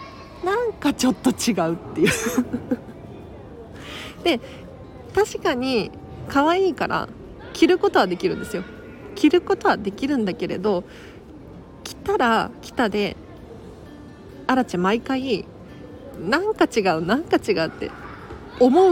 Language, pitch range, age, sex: Japanese, 195-285 Hz, 40-59, female